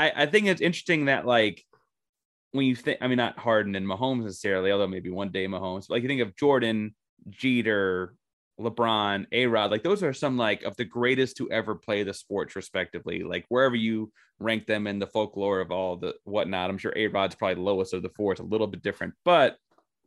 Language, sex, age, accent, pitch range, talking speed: English, male, 30-49, American, 110-145 Hz, 210 wpm